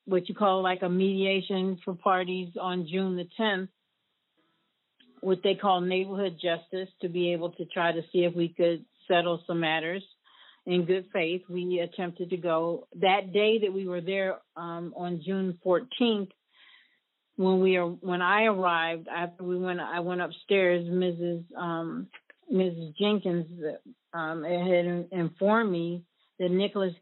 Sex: female